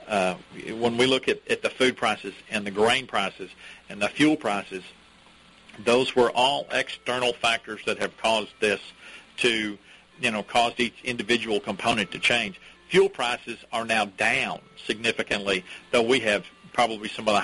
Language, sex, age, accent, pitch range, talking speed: English, male, 50-69, American, 105-125 Hz, 165 wpm